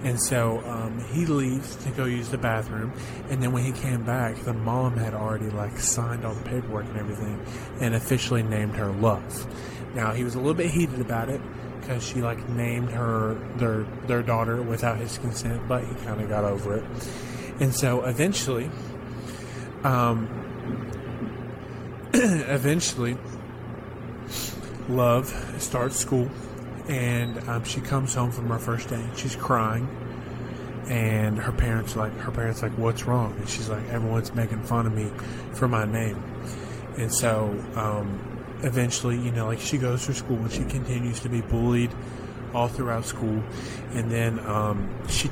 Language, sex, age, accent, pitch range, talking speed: English, male, 30-49, American, 115-125 Hz, 165 wpm